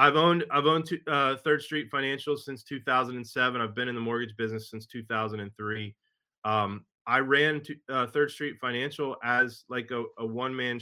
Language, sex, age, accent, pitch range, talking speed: English, male, 20-39, American, 110-130 Hz, 175 wpm